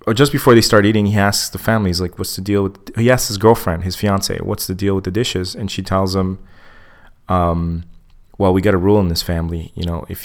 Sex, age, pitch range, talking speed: male, 30-49, 90-105 Hz, 265 wpm